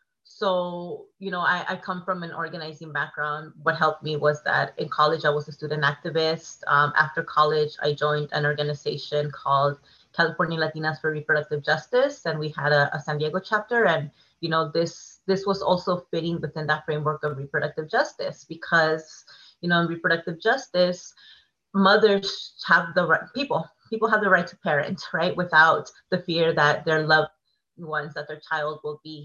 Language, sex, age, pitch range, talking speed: English, female, 30-49, 150-180 Hz, 180 wpm